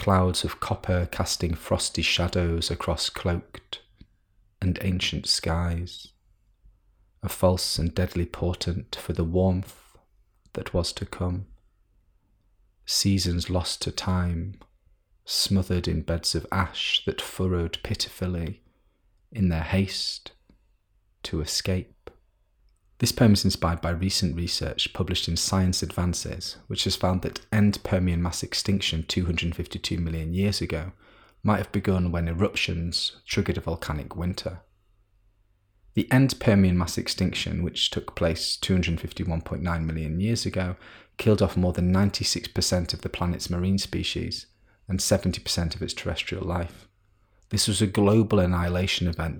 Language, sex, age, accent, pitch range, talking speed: English, male, 30-49, British, 85-100 Hz, 130 wpm